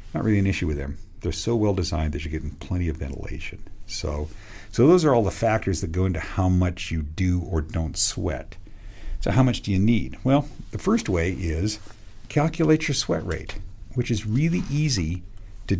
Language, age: English, 50-69